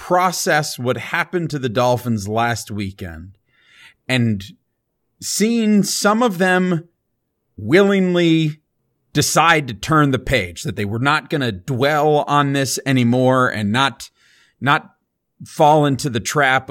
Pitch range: 115-160 Hz